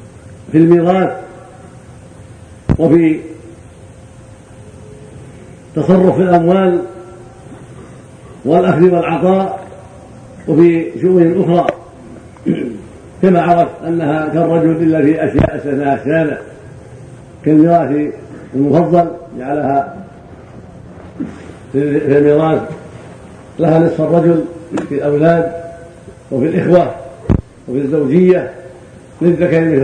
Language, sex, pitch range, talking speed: Arabic, male, 130-170 Hz, 70 wpm